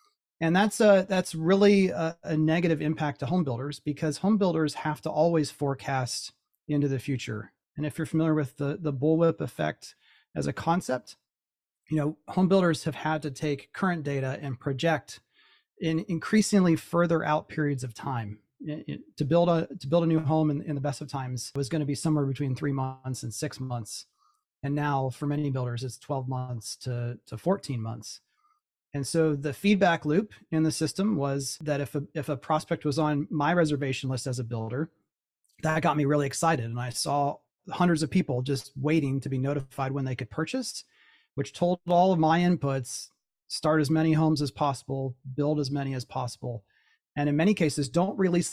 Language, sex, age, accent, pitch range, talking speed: English, male, 30-49, American, 135-165 Hz, 190 wpm